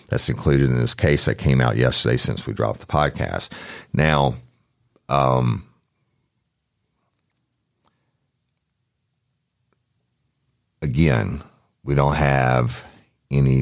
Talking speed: 95 wpm